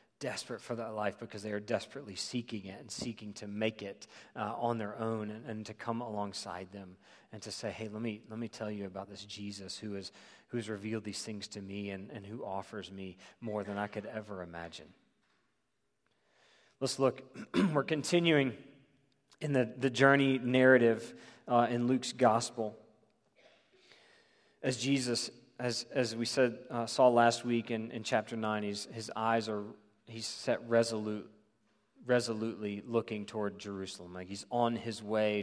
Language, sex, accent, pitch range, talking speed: English, male, American, 105-120 Hz, 170 wpm